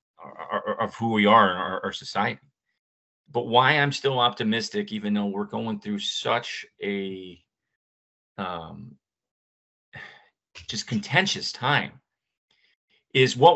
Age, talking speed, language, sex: 40-59, 115 wpm, English, male